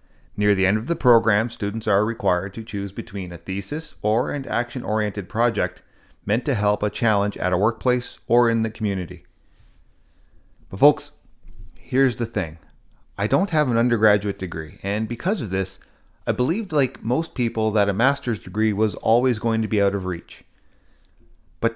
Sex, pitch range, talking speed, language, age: male, 95-120 Hz, 175 wpm, English, 30-49